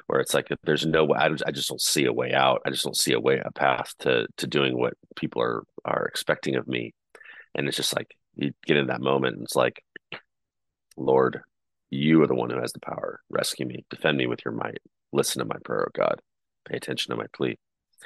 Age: 30-49